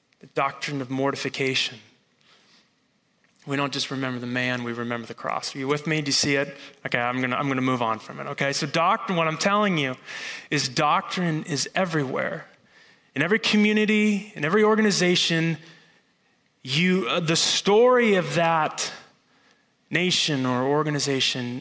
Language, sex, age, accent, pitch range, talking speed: English, male, 20-39, American, 140-185 Hz, 165 wpm